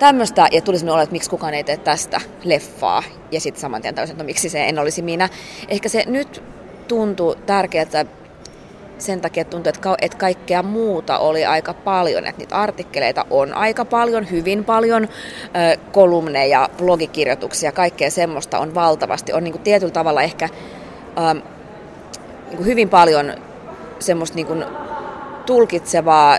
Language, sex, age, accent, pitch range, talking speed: Finnish, female, 20-39, native, 155-195 Hz, 140 wpm